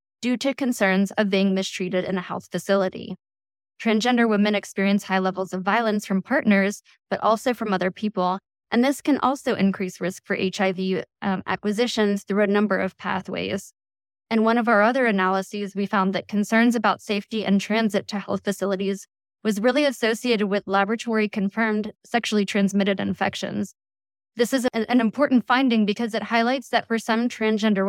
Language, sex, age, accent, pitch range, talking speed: English, female, 10-29, American, 195-225 Hz, 165 wpm